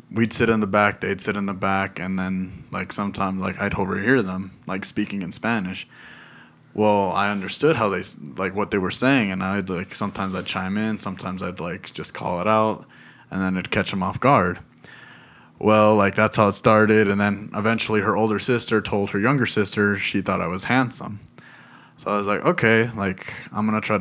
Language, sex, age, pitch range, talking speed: English, male, 20-39, 95-105 Hz, 205 wpm